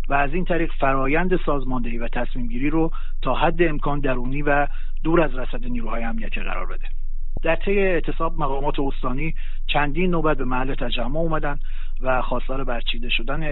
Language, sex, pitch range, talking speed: Persian, male, 125-150 Hz, 160 wpm